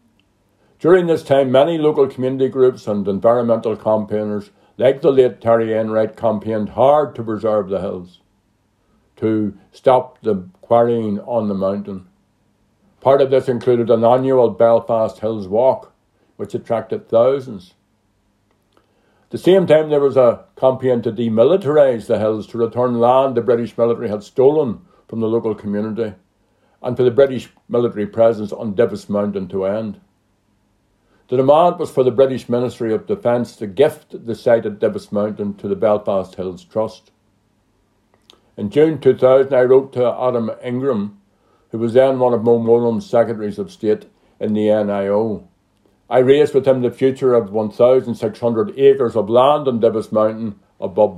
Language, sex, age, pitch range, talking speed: English, male, 60-79, 105-125 Hz, 155 wpm